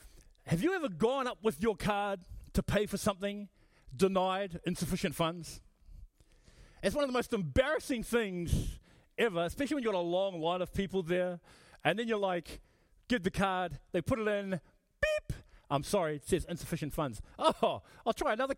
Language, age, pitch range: English, 30-49, 150-210 Hz